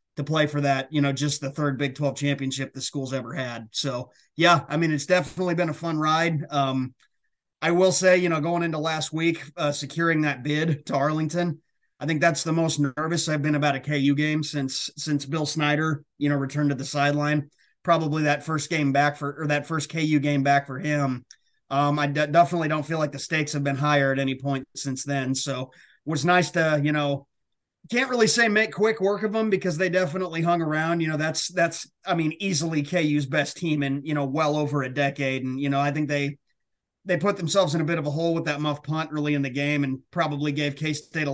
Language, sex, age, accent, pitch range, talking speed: English, male, 30-49, American, 140-165 Hz, 230 wpm